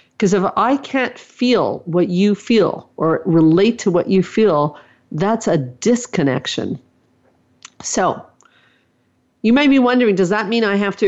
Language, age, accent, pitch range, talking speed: English, 50-69, American, 165-200 Hz, 150 wpm